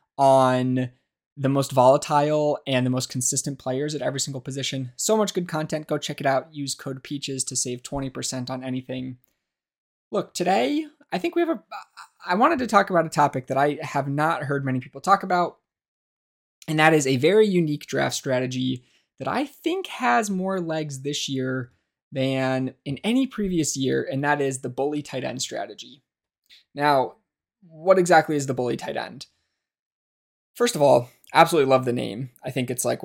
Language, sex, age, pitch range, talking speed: English, male, 20-39, 130-155 Hz, 180 wpm